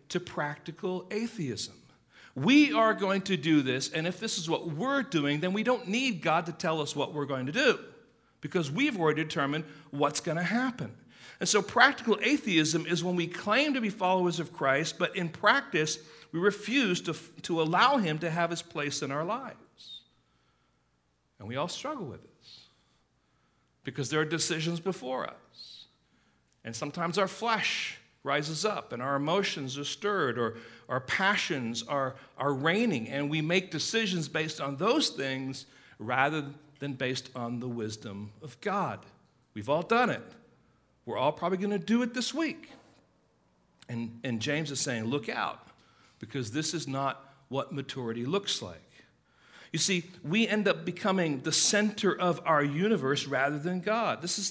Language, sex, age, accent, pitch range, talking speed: English, male, 60-79, American, 135-195 Hz, 170 wpm